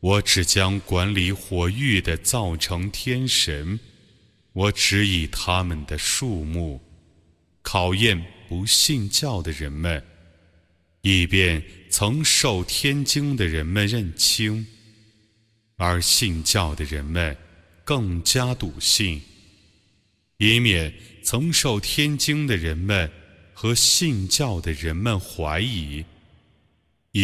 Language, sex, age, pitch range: Arabic, male, 30-49, 85-110 Hz